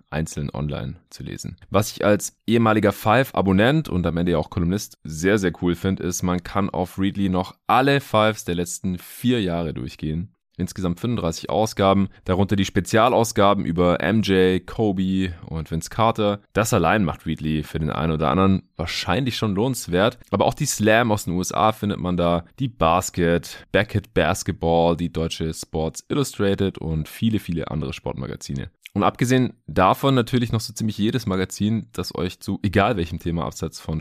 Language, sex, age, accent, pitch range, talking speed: German, male, 30-49, German, 85-110 Hz, 170 wpm